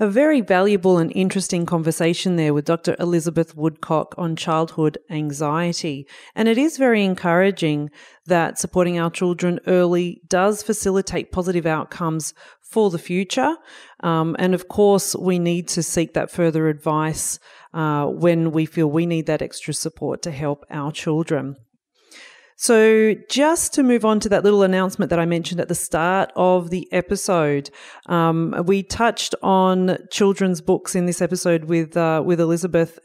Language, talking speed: English, 155 wpm